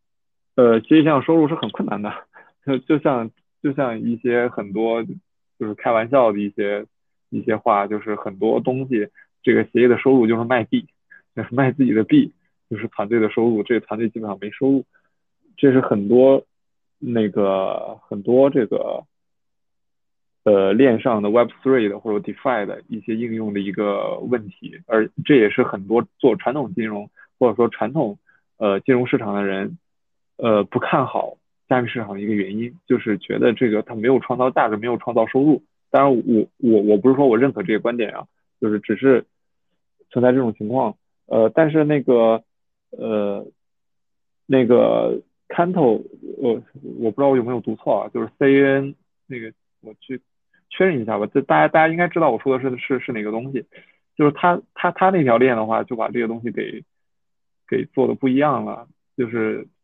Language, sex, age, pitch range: Chinese, male, 20-39, 110-135 Hz